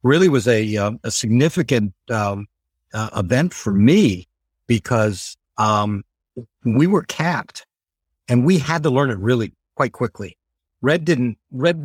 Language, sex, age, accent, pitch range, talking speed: English, male, 60-79, American, 100-135 Hz, 140 wpm